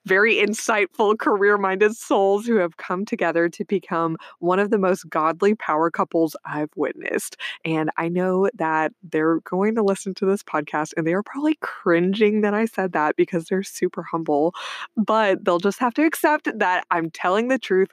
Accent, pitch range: American, 165-205 Hz